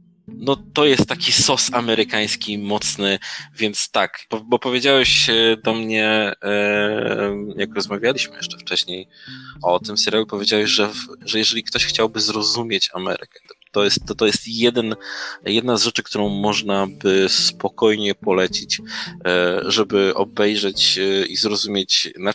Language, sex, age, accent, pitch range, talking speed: Polish, male, 20-39, native, 100-125 Hz, 130 wpm